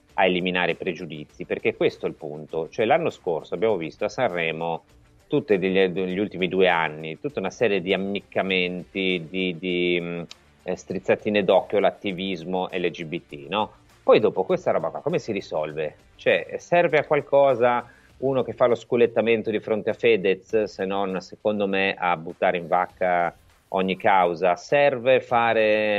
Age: 30-49